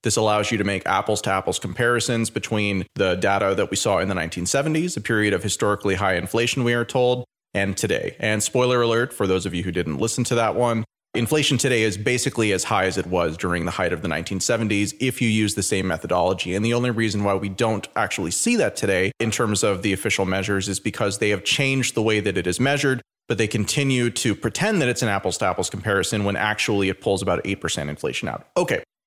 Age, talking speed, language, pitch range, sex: 30-49, 225 wpm, English, 95-120 Hz, male